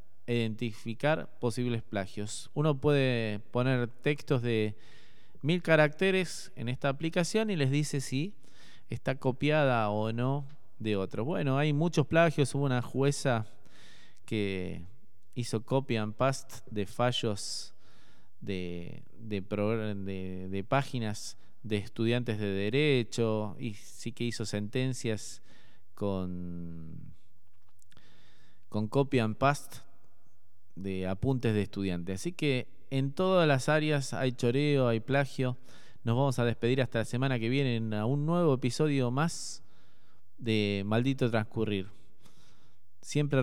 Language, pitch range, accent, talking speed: Spanish, 105-135 Hz, Argentinian, 125 wpm